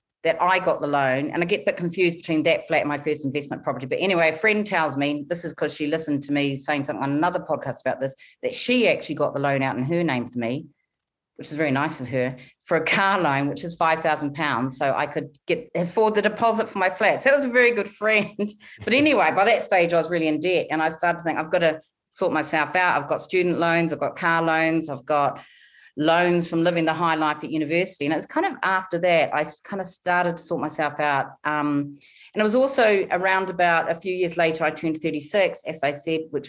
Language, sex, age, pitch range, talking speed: English, female, 40-59, 150-190 Hz, 250 wpm